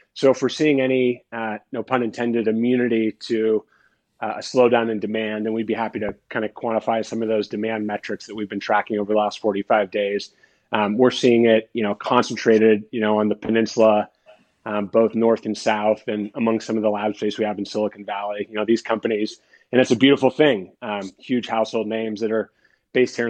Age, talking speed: 30-49, 215 wpm